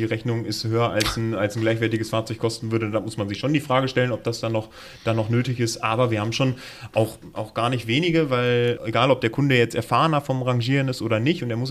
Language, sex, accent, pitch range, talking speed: German, male, German, 115-130 Hz, 265 wpm